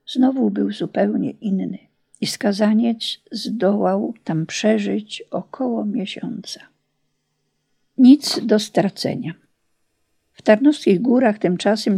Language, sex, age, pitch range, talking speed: Polish, female, 50-69, 195-245 Hz, 90 wpm